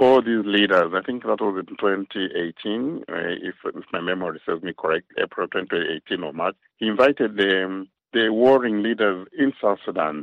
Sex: male